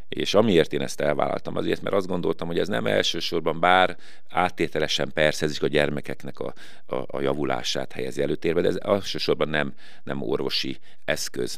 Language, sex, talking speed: Hungarian, male, 160 wpm